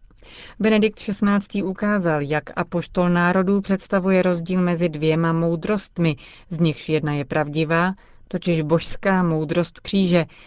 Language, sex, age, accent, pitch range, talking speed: Czech, female, 40-59, native, 155-185 Hz, 115 wpm